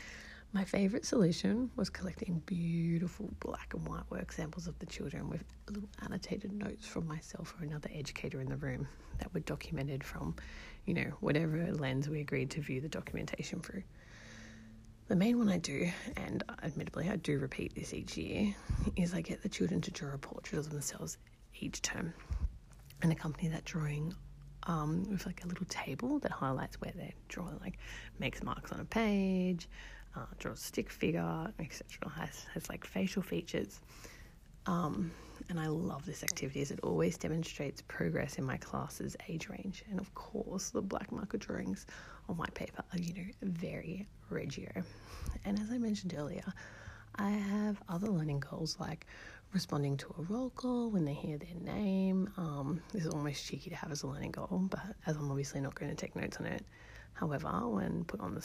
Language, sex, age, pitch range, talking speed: English, female, 30-49, 145-195 Hz, 180 wpm